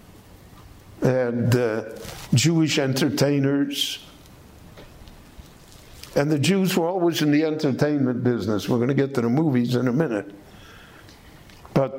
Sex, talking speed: male, 120 wpm